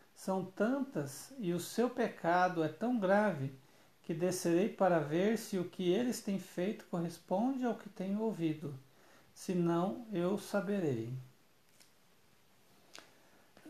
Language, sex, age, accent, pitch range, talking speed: Portuguese, male, 60-79, Brazilian, 160-200 Hz, 120 wpm